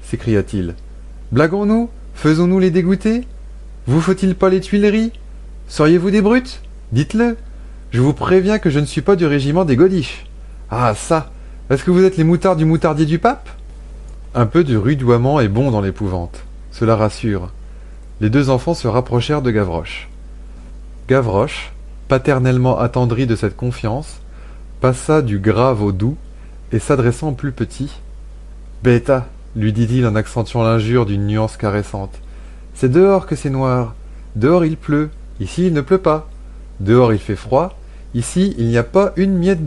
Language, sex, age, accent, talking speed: French, male, 30-49, French, 160 wpm